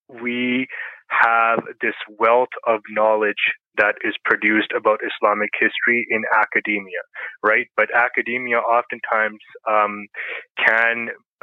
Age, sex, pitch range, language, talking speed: 20-39, male, 105-115 Hz, English, 105 wpm